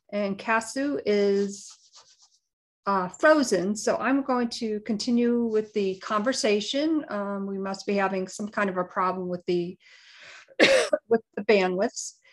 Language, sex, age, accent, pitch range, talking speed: English, female, 50-69, American, 190-245 Hz, 130 wpm